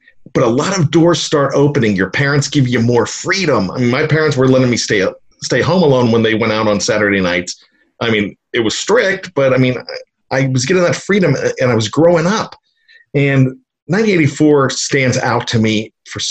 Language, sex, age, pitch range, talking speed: English, male, 40-59, 105-140 Hz, 205 wpm